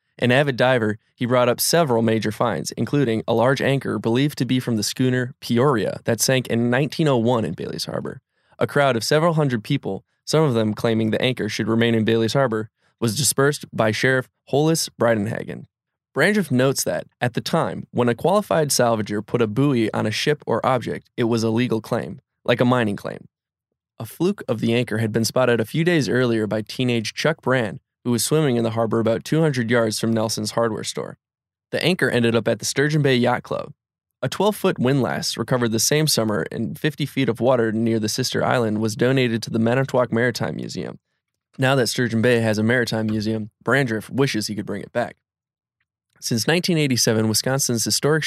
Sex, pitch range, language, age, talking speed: male, 110-135 Hz, English, 20-39, 195 wpm